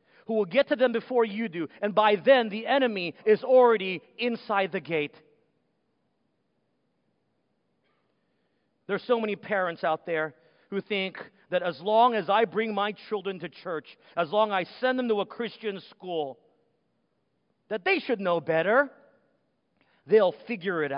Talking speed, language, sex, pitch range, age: 155 wpm, English, male, 175-230 Hz, 40-59